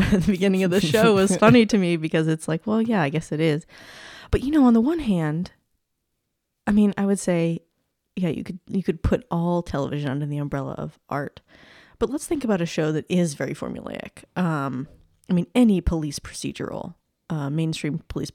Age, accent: 20-39, American